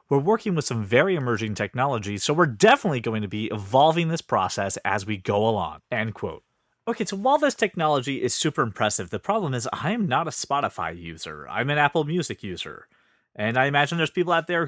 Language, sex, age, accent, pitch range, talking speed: English, male, 30-49, American, 110-175 Hz, 210 wpm